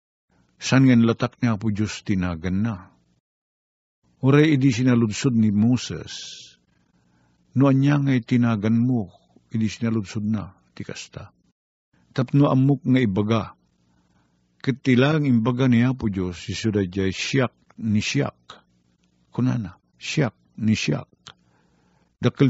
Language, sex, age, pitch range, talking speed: Filipino, male, 50-69, 95-125 Hz, 100 wpm